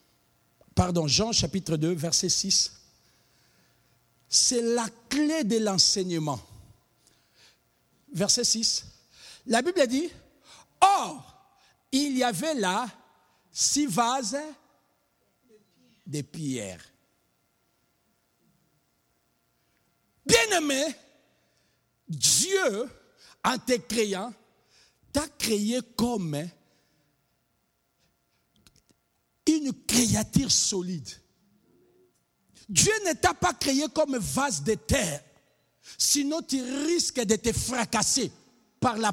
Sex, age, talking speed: male, 60-79, 90 wpm